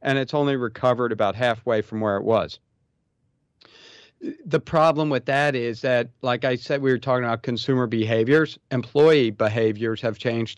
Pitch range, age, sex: 115-140 Hz, 40-59, male